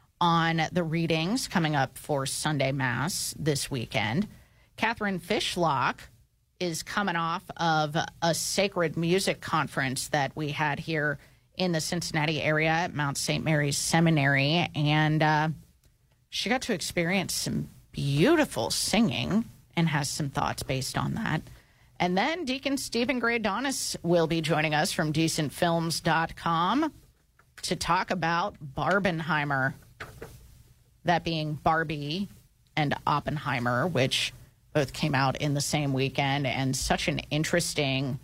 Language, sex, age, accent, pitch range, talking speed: English, female, 30-49, American, 145-185 Hz, 125 wpm